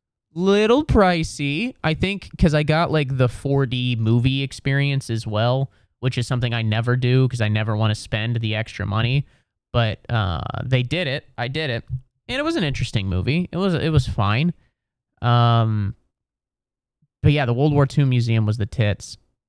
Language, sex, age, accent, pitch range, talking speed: English, male, 20-39, American, 115-145 Hz, 180 wpm